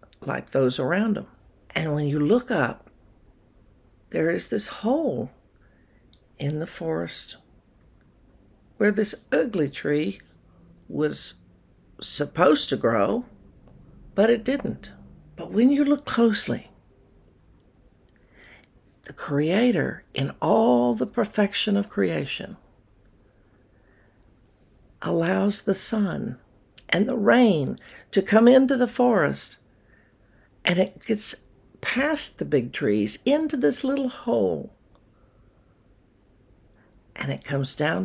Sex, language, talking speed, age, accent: female, English, 105 wpm, 60-79, American